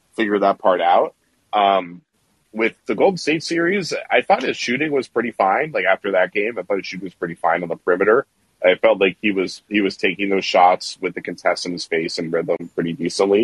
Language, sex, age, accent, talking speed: English, male, 30-49, American, 230 wpm